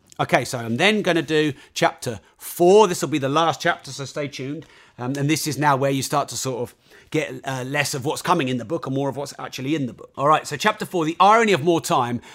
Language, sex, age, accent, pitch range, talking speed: English, male, 40-59, British, 135-185 Hz, 270 wpm